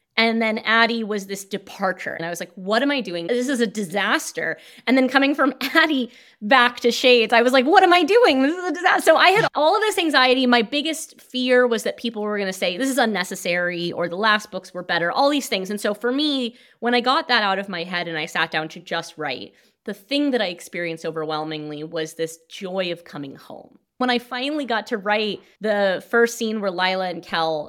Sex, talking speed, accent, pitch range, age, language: female, 240 wpm, American, 180-255 Hz, 20-39, English